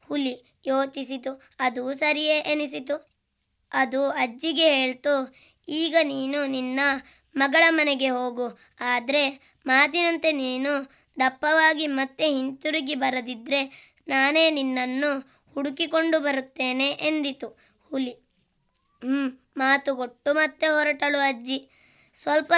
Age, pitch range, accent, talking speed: 20-39, 265-300 Hz, native, 90 wpm